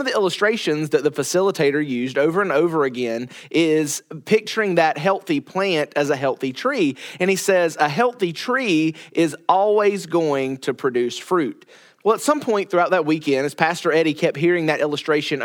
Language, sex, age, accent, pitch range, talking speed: English, male, 30-49, American, 150-210 Hz, 180 wpm